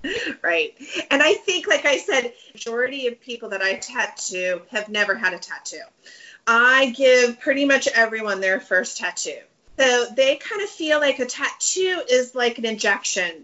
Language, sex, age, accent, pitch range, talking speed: English, female, 30-49, American, 200-280 Hz, 175 wpm